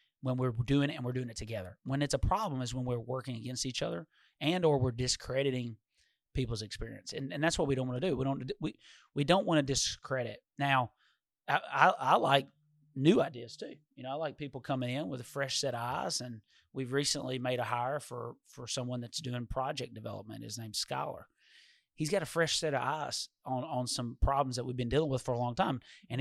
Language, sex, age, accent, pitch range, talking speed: English, male, 30-49, American, 125-155 Hz, 230 wpm